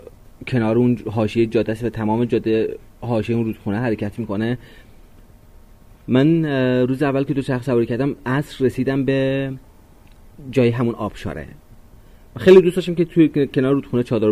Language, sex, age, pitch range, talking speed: Persian, male, 30-49, 105-125 Hz, 145 wpm